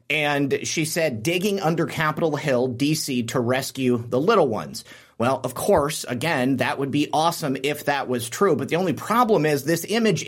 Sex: male